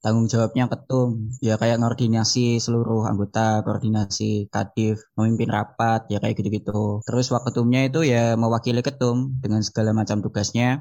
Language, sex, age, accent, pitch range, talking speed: Indonesian, male, 20-39, native, 115-130 Hz, 140 wpm